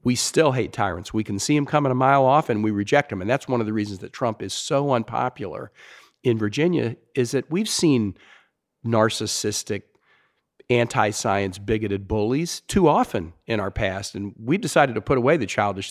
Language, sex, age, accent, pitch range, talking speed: English, male, 50-69, American, 100-125 Hz, 190 wpm